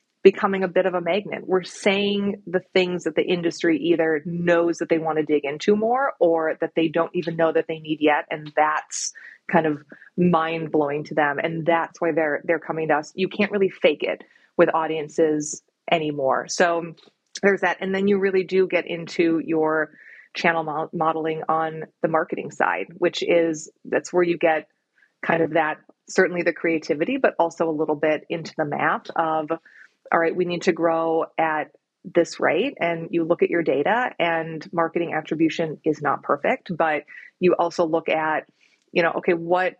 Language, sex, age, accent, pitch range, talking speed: English, female, 30-49, American, 160-180 Hz, 185 wpm